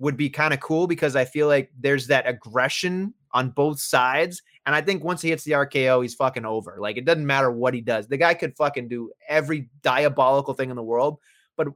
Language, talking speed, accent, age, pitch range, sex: English, 230 wpm, American, 30-49, 130-155 Hz, male